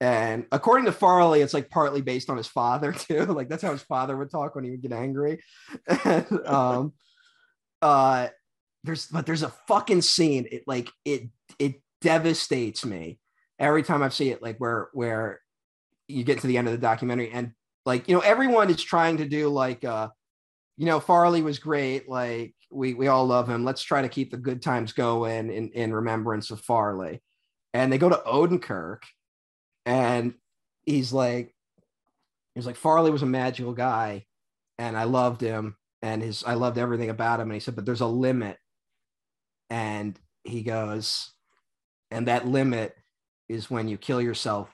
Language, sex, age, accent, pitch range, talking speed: English, male, 30-49, American, 110-140 Hz, 180 wpm